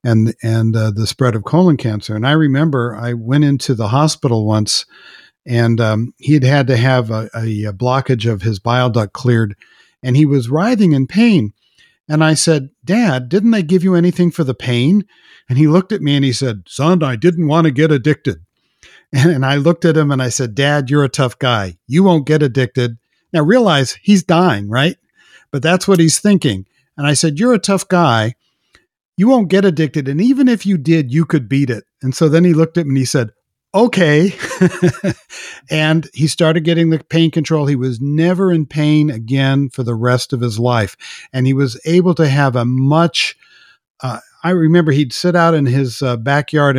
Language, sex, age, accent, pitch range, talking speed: English, male, 60-79, American, 125-170 Hz, 205 wpm